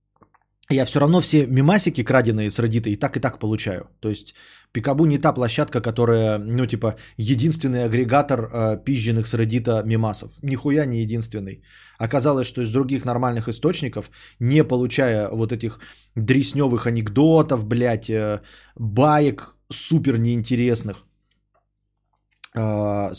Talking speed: 130 wpm